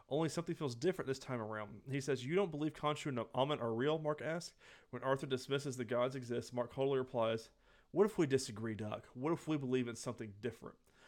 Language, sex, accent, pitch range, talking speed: English, male, American, 125-150 Hz, 215 wpm